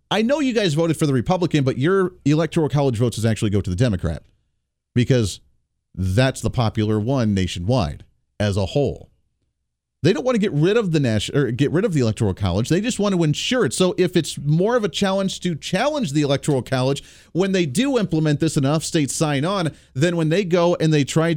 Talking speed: 220 wpm